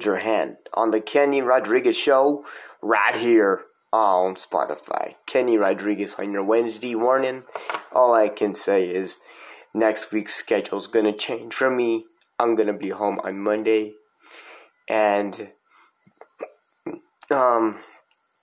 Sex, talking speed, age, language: male, 130 wpm, 20-39, English